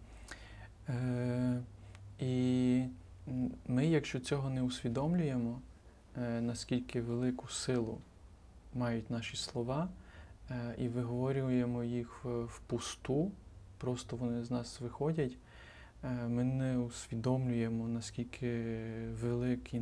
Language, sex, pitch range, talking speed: Ukrainian, male, 115-125 Hz, 80 wpm